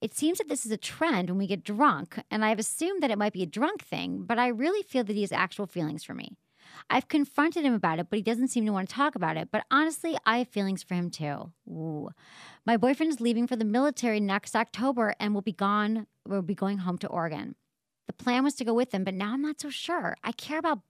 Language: English